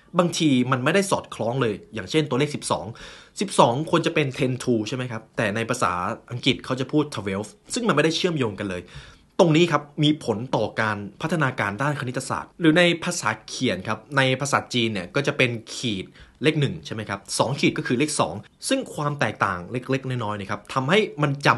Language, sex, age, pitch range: Thai, male, 20-39, 110-150 Hz